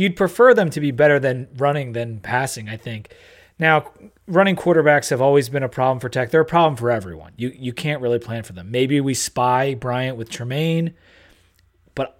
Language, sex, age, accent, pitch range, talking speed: English, male, 30-49, American, 105-145 Hz, 200 wpm